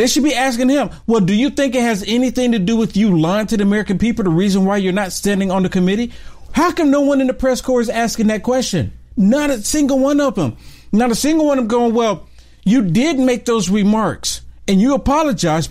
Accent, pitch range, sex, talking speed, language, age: American, 140-230 Hz, male, 245 wpm, English, 50-69